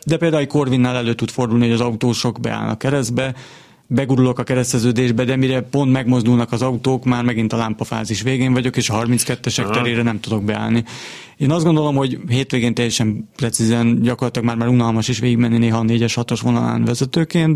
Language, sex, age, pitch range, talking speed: Hungarian, male, 30-49, 115-130 Hz, 180 wpm